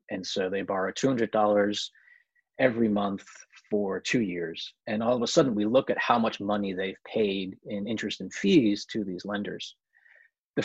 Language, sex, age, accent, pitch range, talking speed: English, male, 30-49, American, 105-140 Hz, 175 wpm